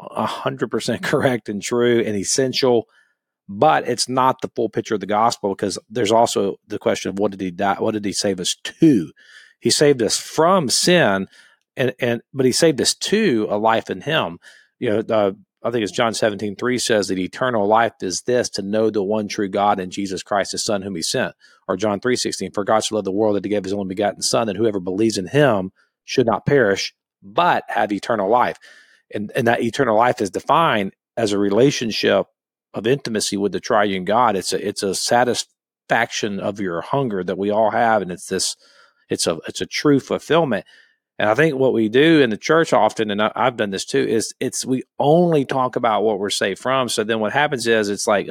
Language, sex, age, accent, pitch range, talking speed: English, male, 40-59, American, 100-125 Hz, 220 wpm